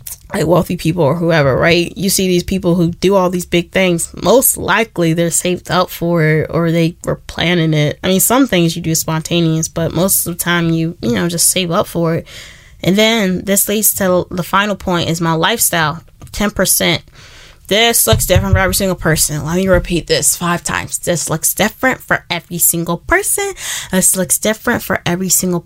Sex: female